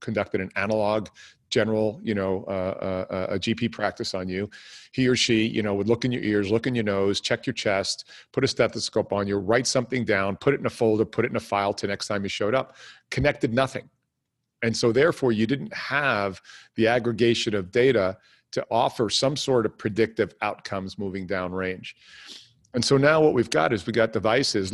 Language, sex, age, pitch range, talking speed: English, male, 40-59, 105-125 Hz, 205 wpm